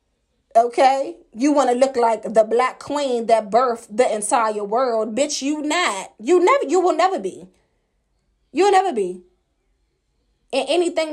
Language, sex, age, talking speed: English, female, 20-39, 145 wpm